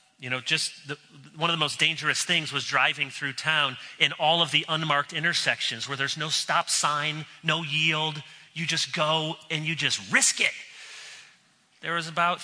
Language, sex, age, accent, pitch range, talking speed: English, male, 30-49, American, 145-210 Hz, 180 wpm